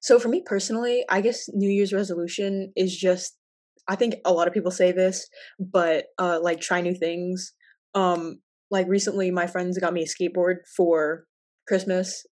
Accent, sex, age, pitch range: American, female, 20-39, 165-190 Hz